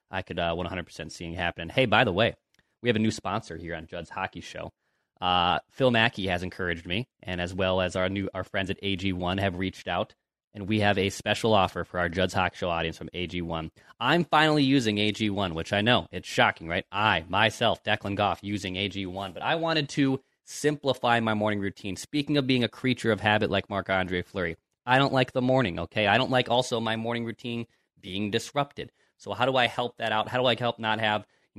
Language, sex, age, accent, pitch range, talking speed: English, male, 20-39, American, 95-120 Hz, 225 wpm